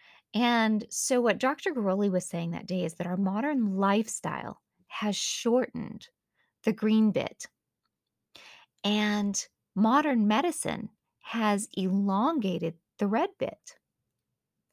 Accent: American